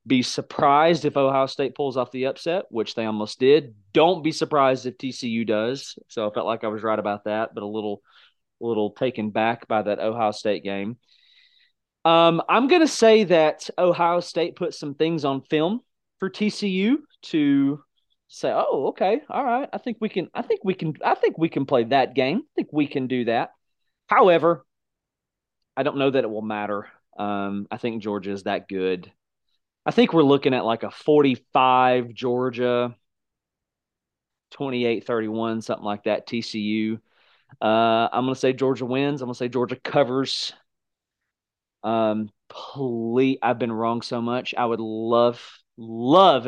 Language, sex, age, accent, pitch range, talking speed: English, male, 30-49, American, 110-145 Hz, 175 wpm